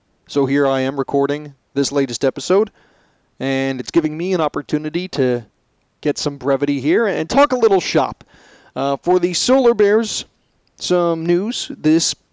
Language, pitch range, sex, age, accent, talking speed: English, 130-170 Hz, male, 30-49, American, 155 wpm